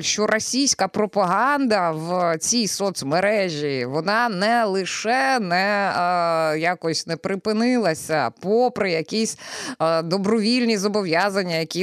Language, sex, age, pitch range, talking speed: Ukrainian, female, 20-39, 165-230 Hz, 100 wpm